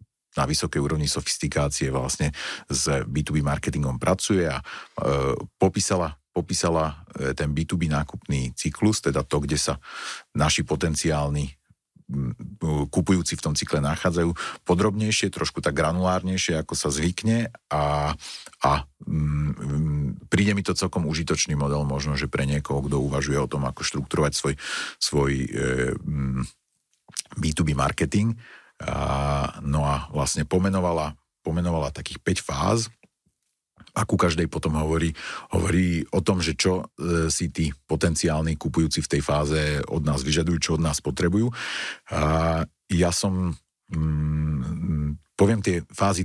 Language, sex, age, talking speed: Slovak, male, 40-59, 125 wpm